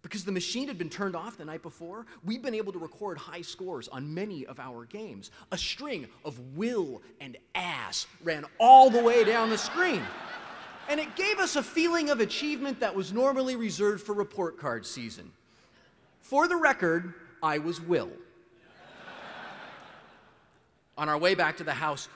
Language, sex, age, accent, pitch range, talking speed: English, male, 30-49, American, 135-200 Hz, 175 wpm